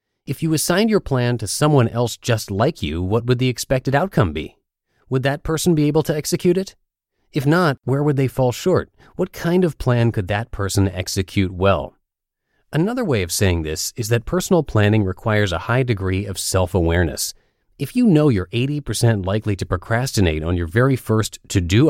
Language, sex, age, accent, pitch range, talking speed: English, male, 30-49, American, 95-140 Hz, 190 wpm